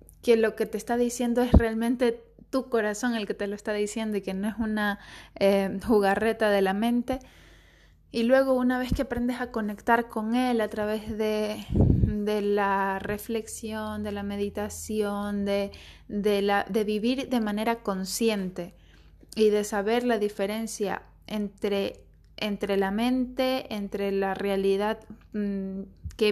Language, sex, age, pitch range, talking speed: Spanish, female, 20-39, 205-230 Hz, 145 wpm